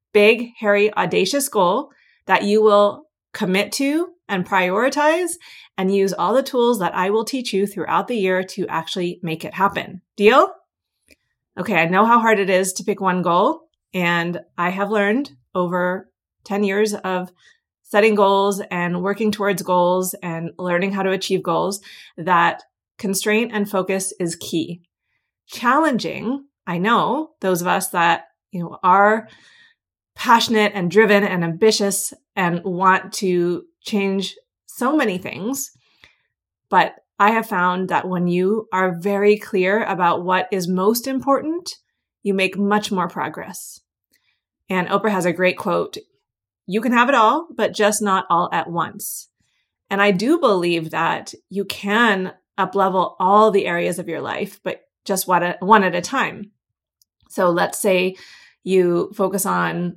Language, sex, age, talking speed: English, female, 30-49, 150 wpm